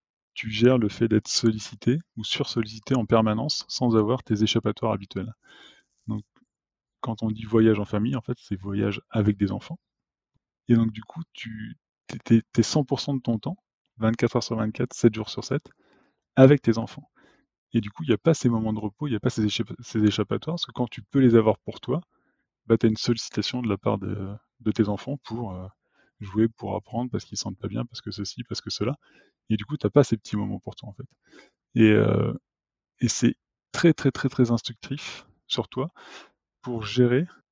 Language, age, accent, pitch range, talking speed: French, 20-39, French, 105-125 Hz, 215 wpm